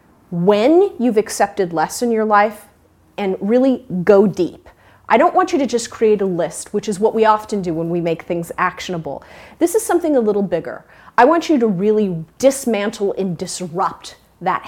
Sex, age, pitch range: female, 30-49, 185-240 Hz